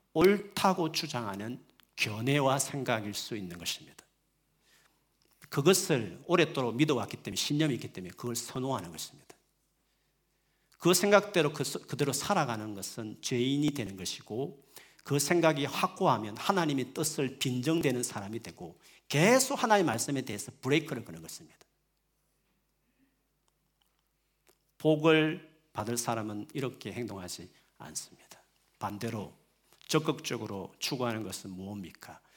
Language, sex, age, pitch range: Korean, male, 40-59, 110-160 Hz